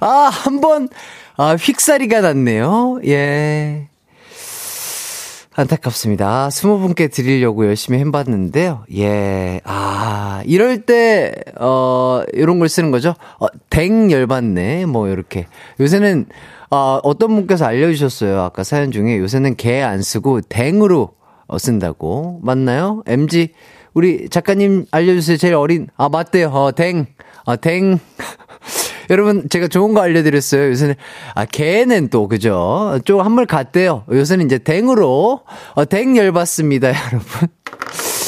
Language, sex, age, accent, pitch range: Korean, male, 30-49, native, 120-180 Hz